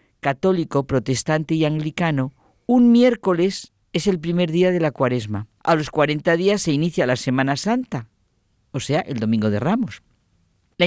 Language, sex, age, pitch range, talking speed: Spanish, female, 50-69, 130-180 Hz, 160 wpm